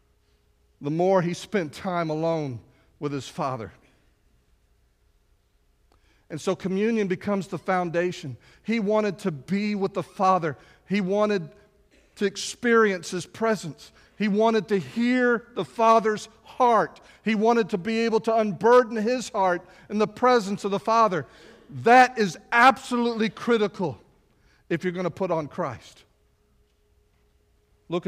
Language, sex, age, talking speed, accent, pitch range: English, male, 50-69, 130 wpm, American, 125-200 Hz